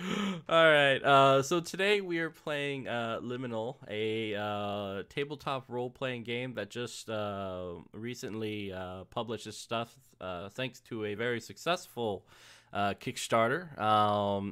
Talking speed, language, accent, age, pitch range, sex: 130 wpm, English, American, 20-39, 100-125 Hz, male